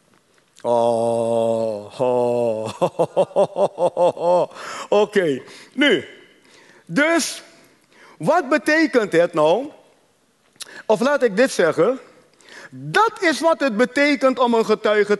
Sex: male